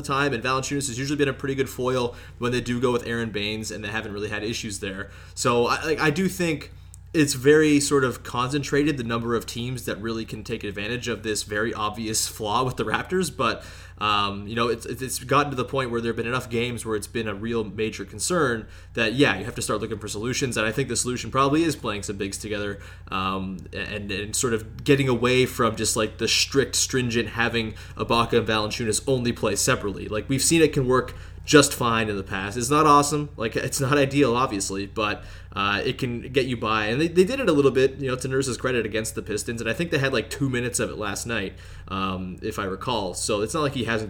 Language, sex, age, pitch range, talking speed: English, male, 20-39, 105-130 Hz, 245 wpm